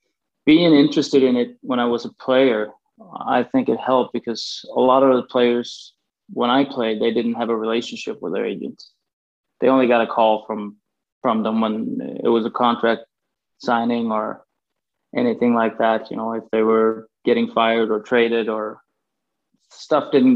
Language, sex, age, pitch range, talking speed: English, male, 20-39, 115-130 Hz, 175 wpm